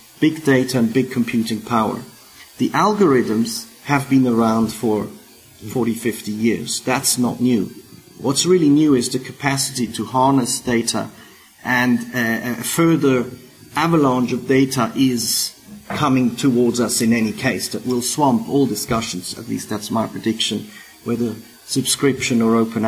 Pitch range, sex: 115-140 Hz, male